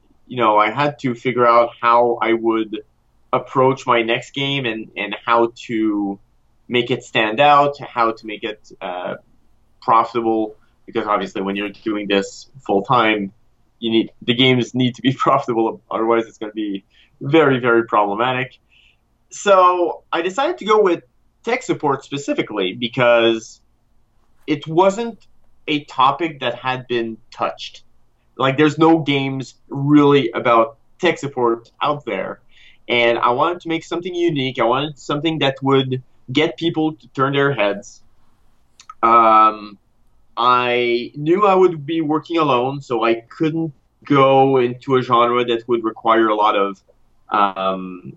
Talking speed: 150 wpm